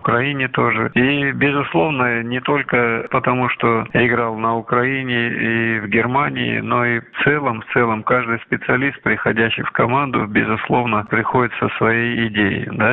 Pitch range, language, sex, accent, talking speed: 110-125 Hz, Russian, male, native, 135 wpm